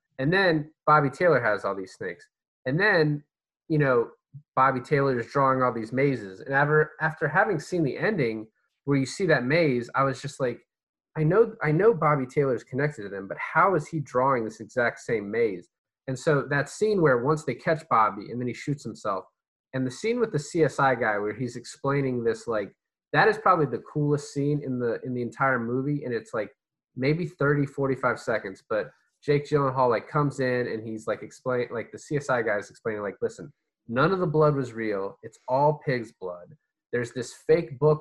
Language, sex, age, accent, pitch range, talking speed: English, male, 20-39, American, 120-155 Hz, 205 wpm